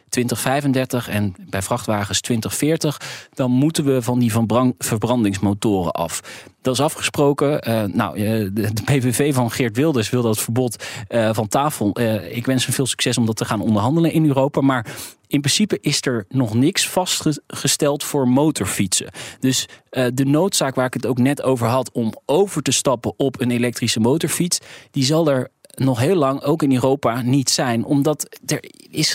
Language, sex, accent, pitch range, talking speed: Dutch, male, Dutch, 115-140 Hz, 175 wpm